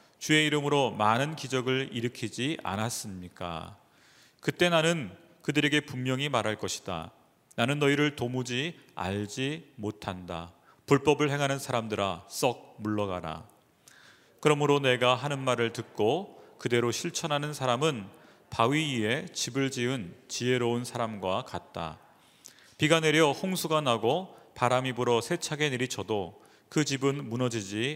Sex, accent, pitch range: male, native, 110-145 Hz